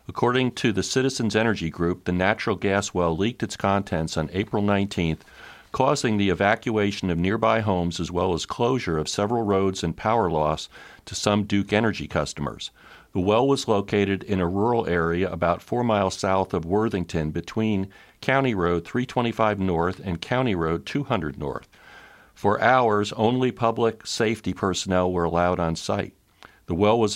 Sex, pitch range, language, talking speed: male, 85-110 Hz, English, 165 wpm